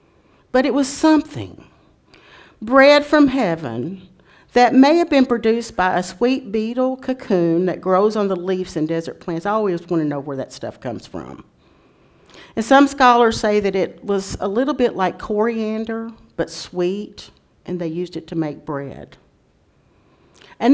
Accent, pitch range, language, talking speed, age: American, 160-240 Hz, English, 165 wpm, 50-69